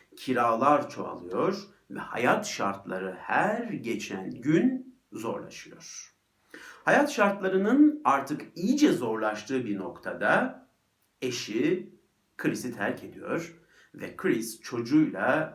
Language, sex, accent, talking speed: Turkish, male, native, 90 wpm